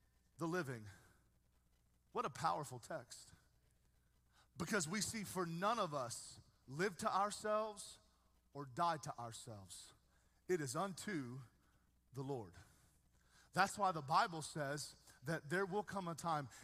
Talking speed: 130 wpm